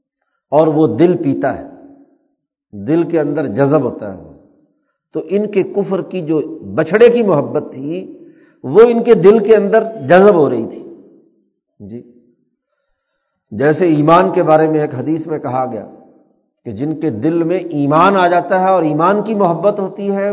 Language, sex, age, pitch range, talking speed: Urdu, male, 60-79, 145-200 Hz, 170 wpm